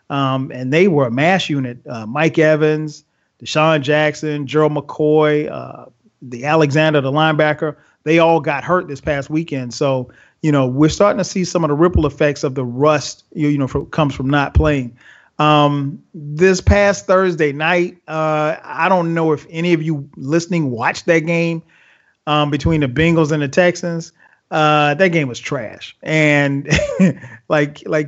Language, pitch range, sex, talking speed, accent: English, 145-175 Hz, male, 170 wpm, American